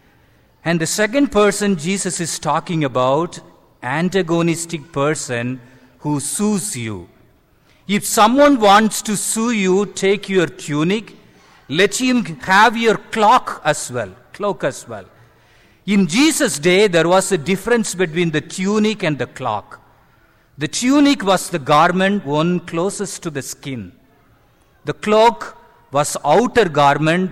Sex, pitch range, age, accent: male, 145-210 Hz, 50-69, Indian